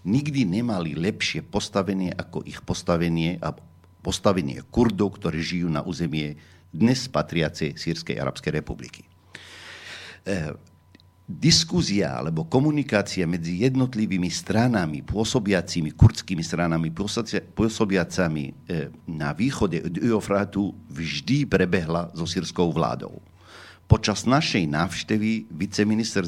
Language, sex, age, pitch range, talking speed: Slovak, male, 50-69, 85-110 Hz, 100 wpm